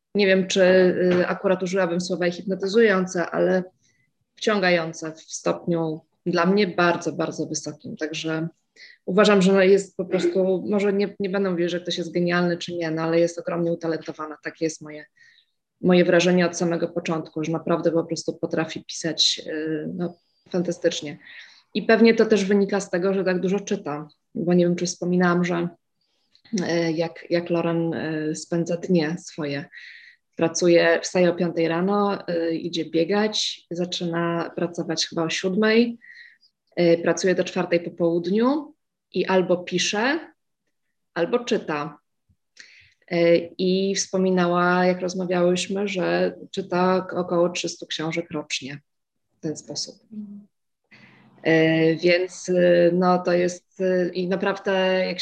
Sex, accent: female, native